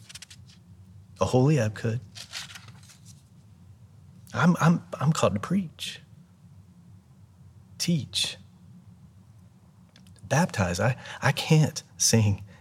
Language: English